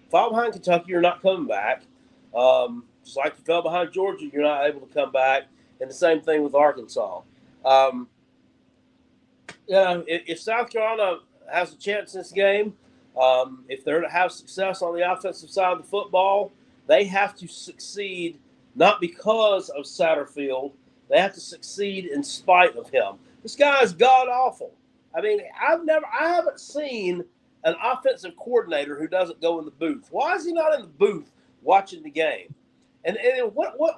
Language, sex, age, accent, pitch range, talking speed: English, male, 40-59, American, 160-250 Hz, 185 wpm